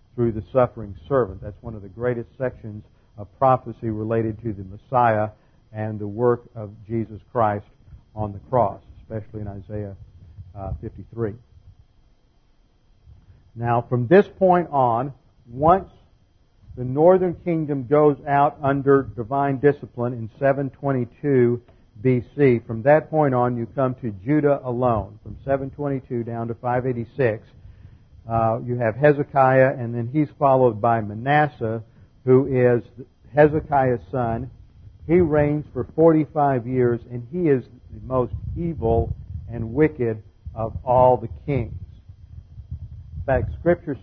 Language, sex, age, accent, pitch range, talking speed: English, male, 50-69, American, 105-135 Hz, 130 wpm